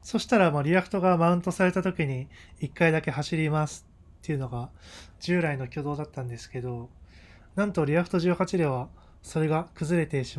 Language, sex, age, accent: Japanese, male, 20-39, native